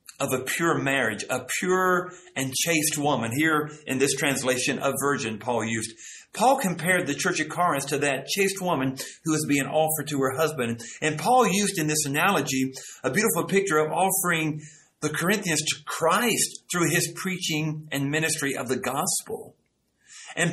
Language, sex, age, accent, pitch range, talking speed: English, male, 50-69, American, 140-185 Hz, 170 wpm